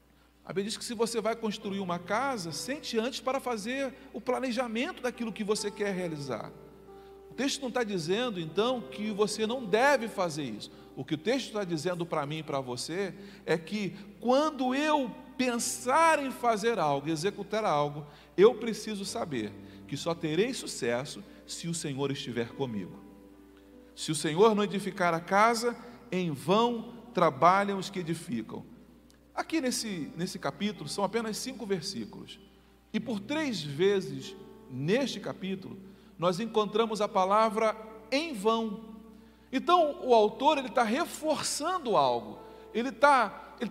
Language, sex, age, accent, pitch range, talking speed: Portuguese, male, 40-59, Brazilian, 195-270 Hz, 150 wpm